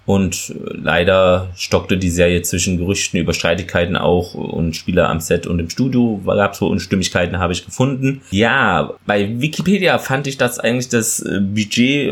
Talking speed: 165 wpm